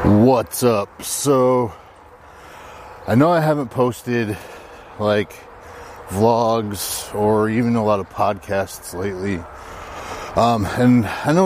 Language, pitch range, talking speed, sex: English, 110-140 Hz, 110 wpm, male